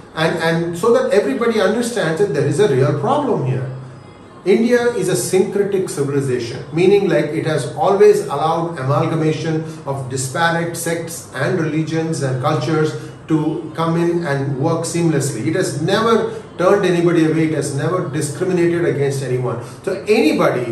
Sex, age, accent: male, 40-59, Indian